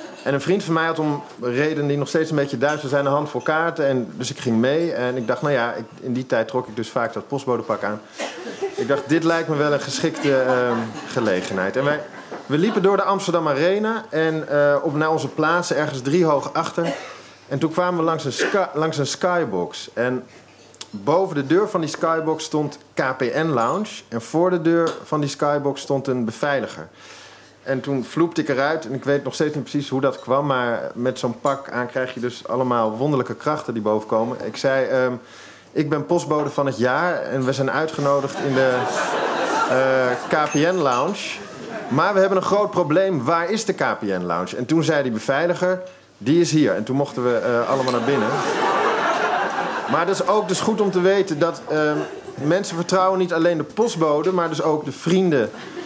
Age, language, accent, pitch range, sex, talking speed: 40-59, Dutch, Dutch, 130-170 Hz, male, 200 wpm